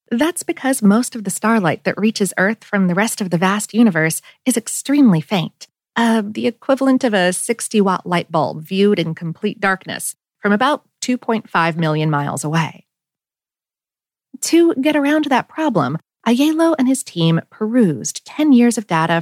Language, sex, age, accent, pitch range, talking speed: English, female, 40-59, American, 175-250 Hz, 165 wpm